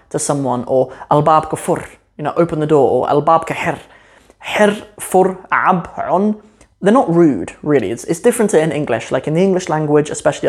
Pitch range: 145-170 Hz